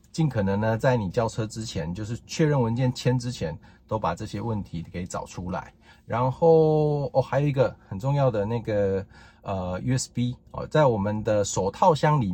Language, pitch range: Chinese, 100-130 Hz